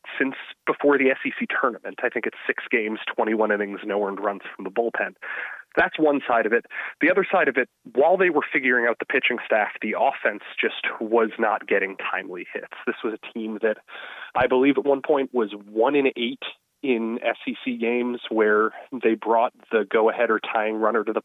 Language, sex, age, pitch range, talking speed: English, male, 30-49, 110-130 Hz, 200 wpm